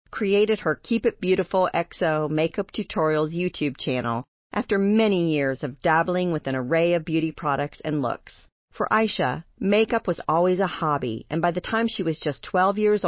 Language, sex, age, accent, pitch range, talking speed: English, female, 40-59, American, 145-205 Hz, 180 wpm